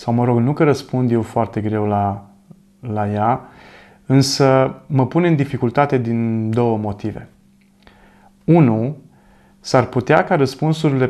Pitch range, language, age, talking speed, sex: 115-150 Hz, Romanian, 30-49, 135 wpm, male